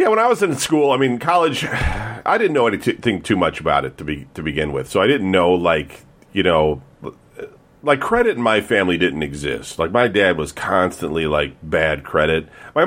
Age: 40-59